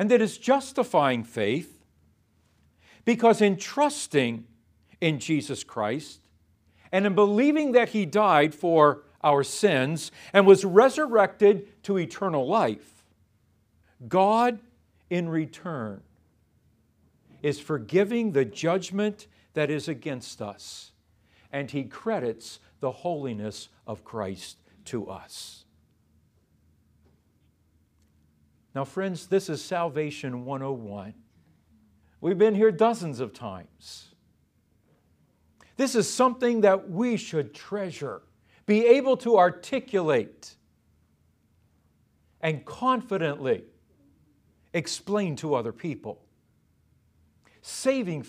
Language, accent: English, American